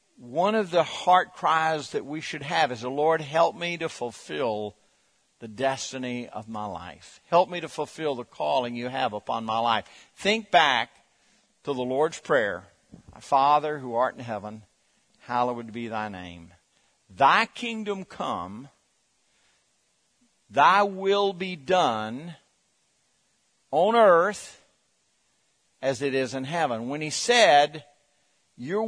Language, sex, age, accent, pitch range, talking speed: English, male, 50-69, American, 125-195 Hz, 135 wpm